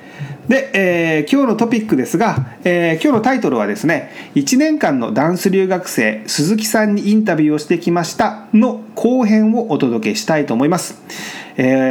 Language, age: Japanese, 40-59